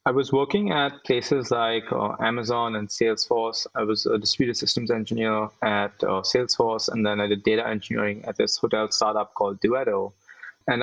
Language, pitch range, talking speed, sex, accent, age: English, 110-135 Hz, 175 wpm, male, Indian, 20-39